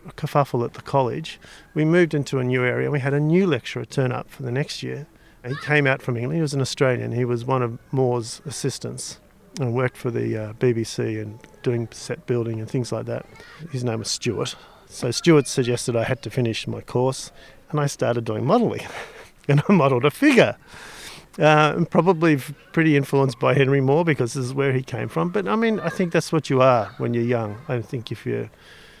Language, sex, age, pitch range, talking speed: English, male, 40-59, 120-145 Hz, 215 wpm